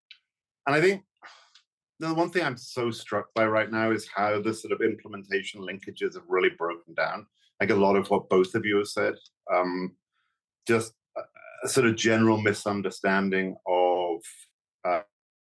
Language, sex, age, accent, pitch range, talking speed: English, male, 40-59, British, 95-140 Hz, 170 wpm